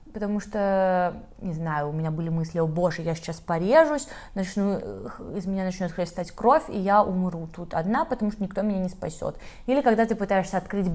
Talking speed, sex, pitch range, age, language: 190 wpm, female, 180-220 Hz, 20-39, Russian